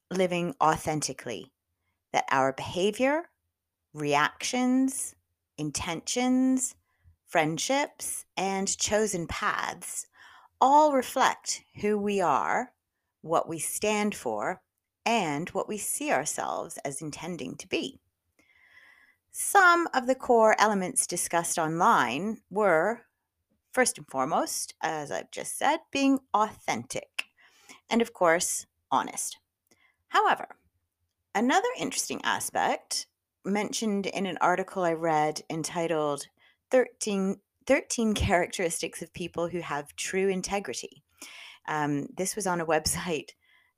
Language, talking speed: English, 105 wpm